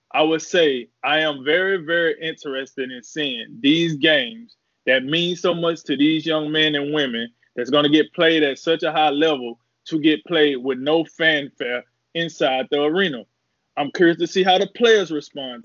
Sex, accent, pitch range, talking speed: male, American, 155-195 Hz, 190 wpm